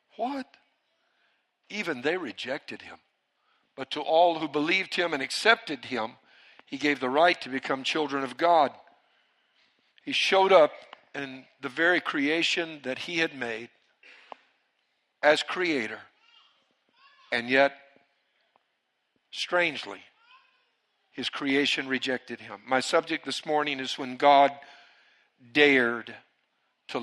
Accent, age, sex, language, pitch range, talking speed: American, 60-79, male, English, 130-165 Hz, 115 wpm